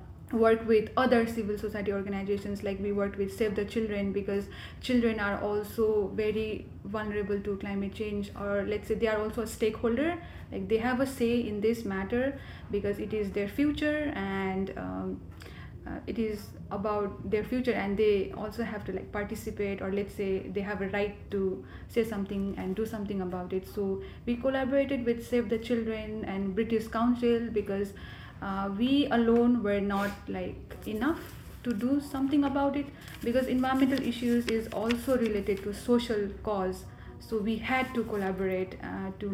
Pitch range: 200-235 Hz